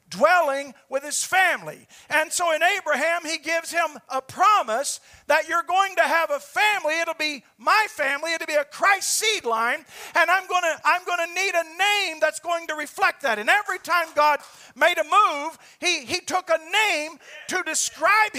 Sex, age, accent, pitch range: male, 50-69, American, 300-360 Hz